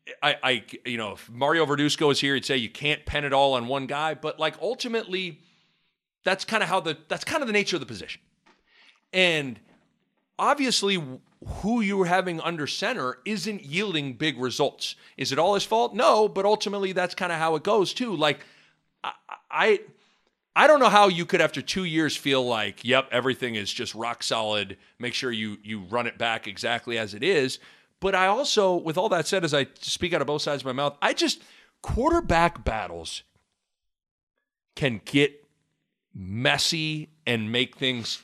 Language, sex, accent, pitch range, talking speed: English, male, American, 120-185 Hz, 185 wpm